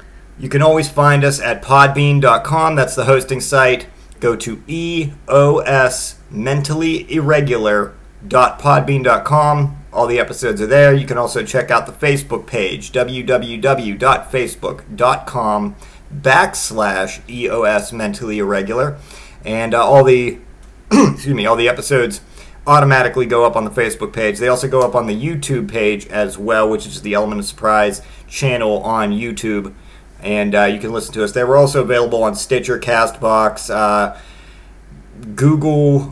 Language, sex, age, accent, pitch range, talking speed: English, male, 40-59, American, 110-140 Hz, 140 wpm